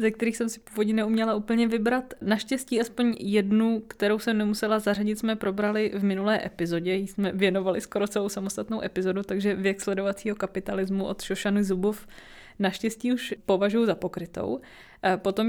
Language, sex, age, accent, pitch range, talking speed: Czech, female, 20-39, native, 190-215 Hz, 155 wpm